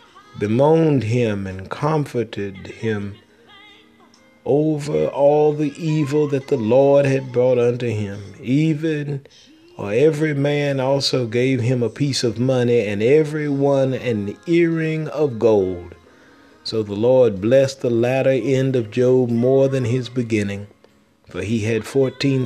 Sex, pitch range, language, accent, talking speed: male, 120-150 Hz, English, American, 135 wpm